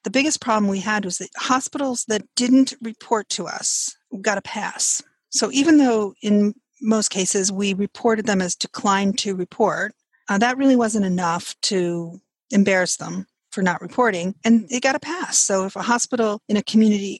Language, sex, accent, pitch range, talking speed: English, female, American, 195-230 Hz, 180 wpm